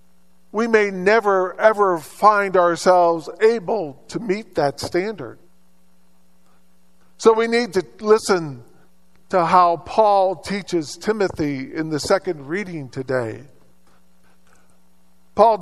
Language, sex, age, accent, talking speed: English, male, 50-69, American, 105 wpm